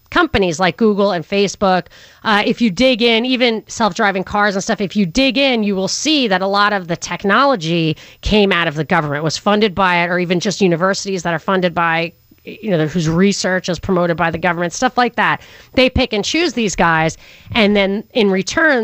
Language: English